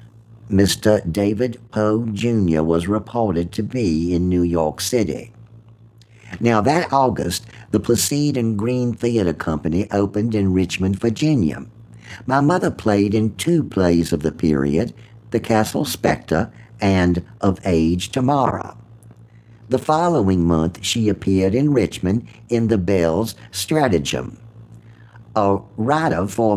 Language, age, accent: English, 60-79, American